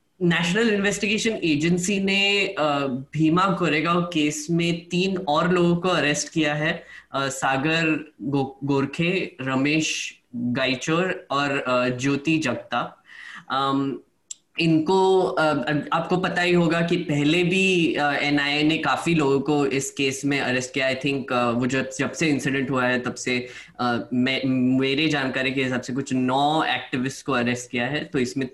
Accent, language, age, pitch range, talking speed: native, Hindi, 10-29, 135-175 Hz, 135 wpm